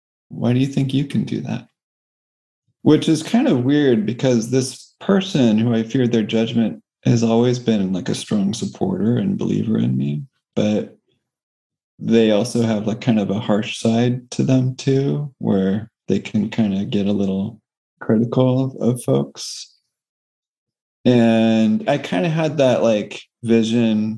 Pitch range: 105-125 Hz